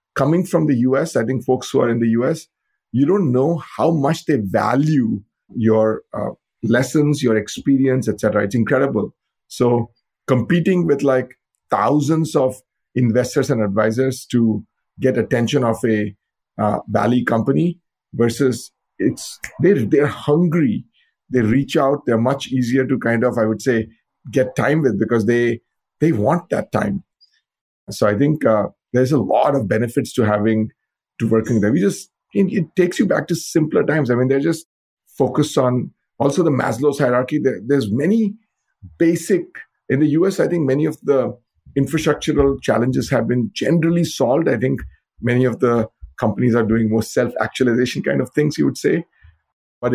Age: 50-69